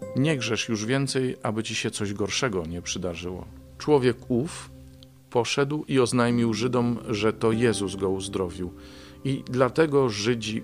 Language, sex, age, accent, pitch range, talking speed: Polish, male, 40-59, native, 95-115 Hz, 140 wpm